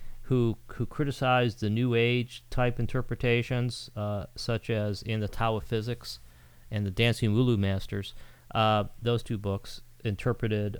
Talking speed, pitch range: 145 wpm, 105-125 Hz